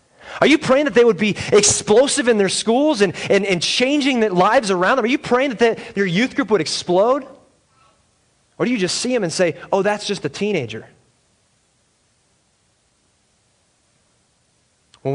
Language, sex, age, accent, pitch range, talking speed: English, male, 30-49, American, 130-200 Hz, 170 wpm